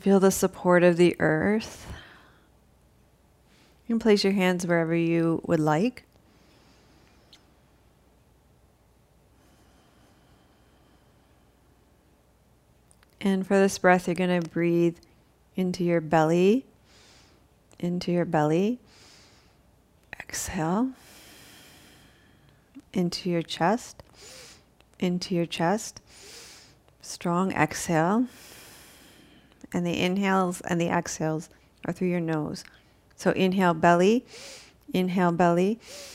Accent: American